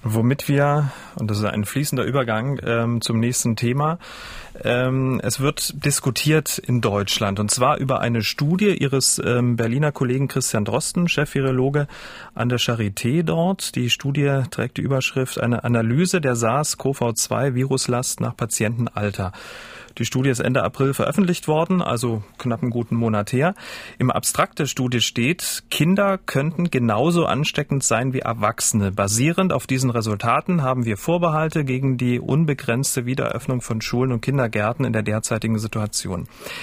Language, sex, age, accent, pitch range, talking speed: German, male, 40-59, German, 120-150 Hz, 150 wpm